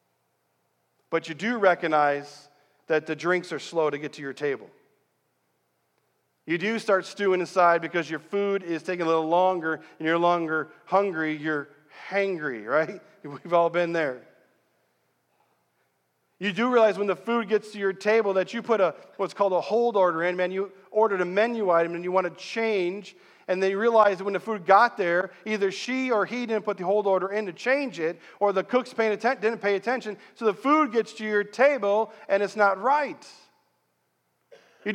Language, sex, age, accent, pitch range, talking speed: English, male, 40-59, American, 175-225 Hz, 185 wpm